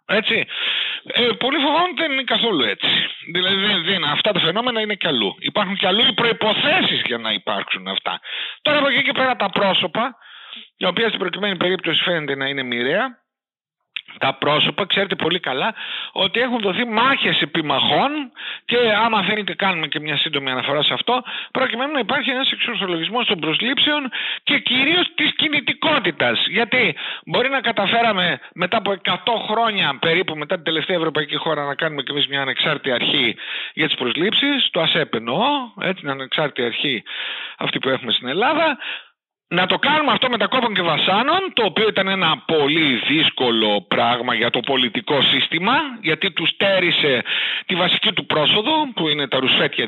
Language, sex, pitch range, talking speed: Greek, male, 165-255 Hz, 165 wpm